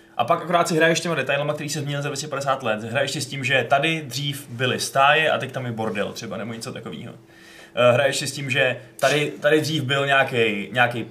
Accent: native